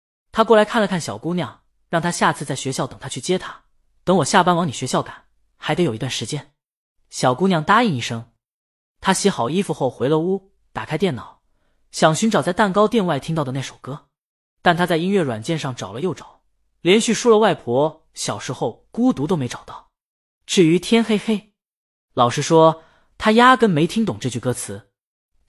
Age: 20-39